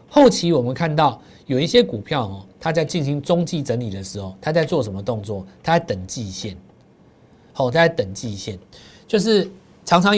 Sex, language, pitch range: male, Chinese, 105-165 Hz